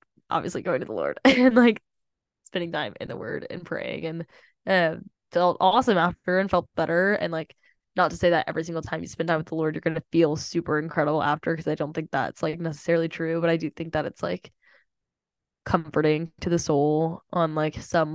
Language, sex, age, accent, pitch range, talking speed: English, female, 10-29, American, 155-175 Hz, 215 wpm